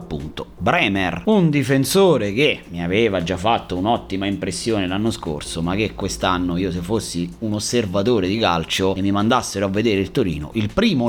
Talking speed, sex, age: 175 wpm, male, 30-49